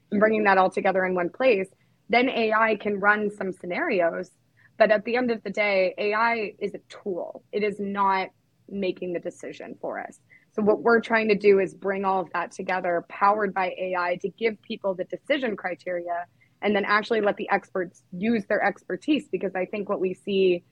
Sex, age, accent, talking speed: female, 20-39, American, 195 wpm